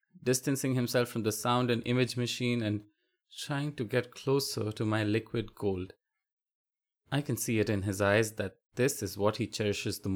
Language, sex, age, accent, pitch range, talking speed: English, male, 20-39, Indian, 95-125 Hz, 185 wpm